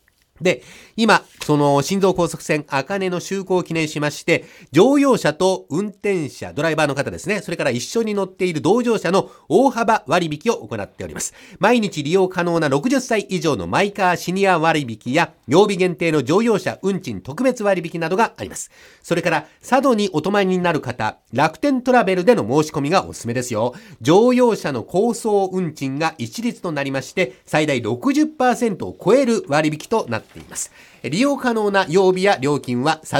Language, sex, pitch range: Japanese, male, 145-200 Hz